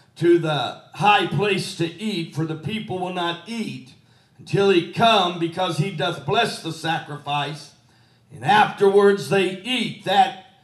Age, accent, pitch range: 50-69, American, 145-200 Hz